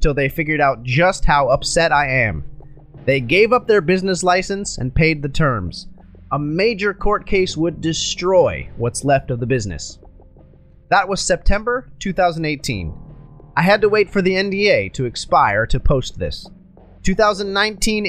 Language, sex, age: English, male, 30-49